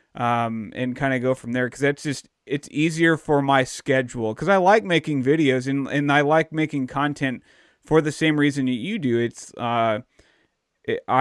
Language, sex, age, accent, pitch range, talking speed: English, male, 30-49, American, 120-145 Hz, 185 wpm